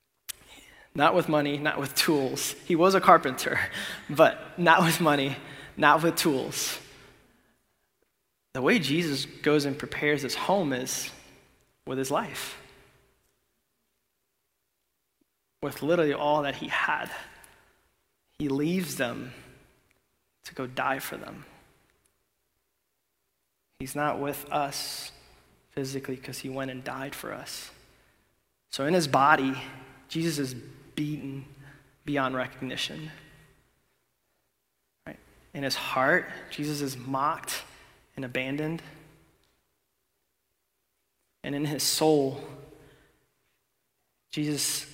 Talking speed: 105 wpm